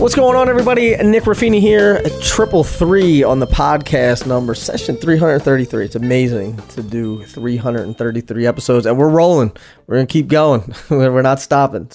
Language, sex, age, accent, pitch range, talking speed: English, male, 20-39, American, 110-145 Hz, 165 wpm